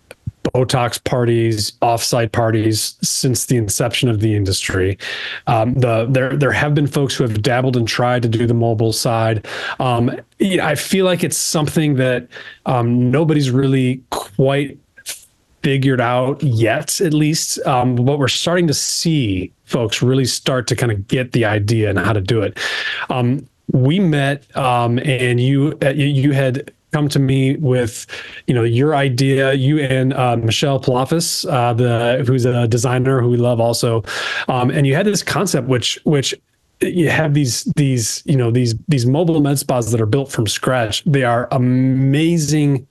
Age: 30-49